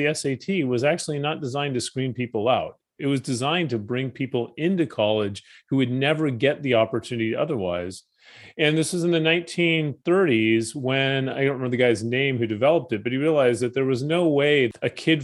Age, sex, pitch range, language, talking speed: 30-49, male, 120-165 Hz, English, 200 wpm